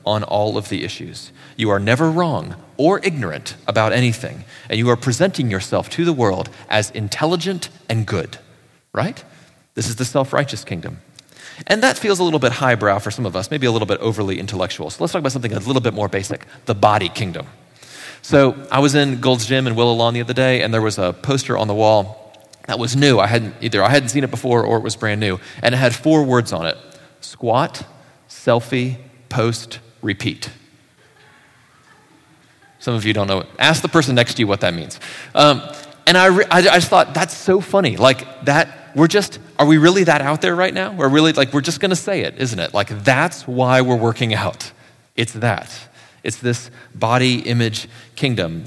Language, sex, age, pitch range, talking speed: English, male, 30-49, 110-140 Hz, 205 wpm